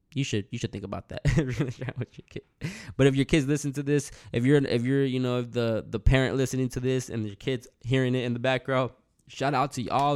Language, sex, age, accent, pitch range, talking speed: English, male, 10-29, American, 120-150 Hz, 230 wpm